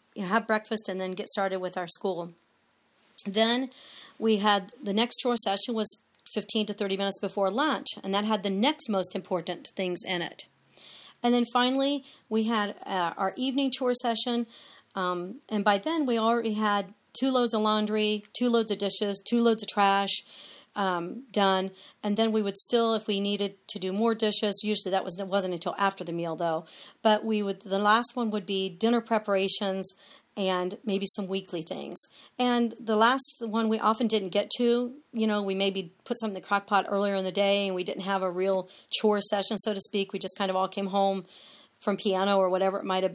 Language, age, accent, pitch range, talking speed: English, 40-59, American, 190-220 Hz, 215 wpm